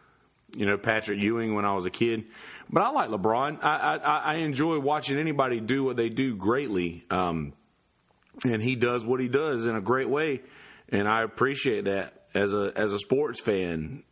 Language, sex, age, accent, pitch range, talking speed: English, male, 40-59, American, 100-125 Hz, 190 wpm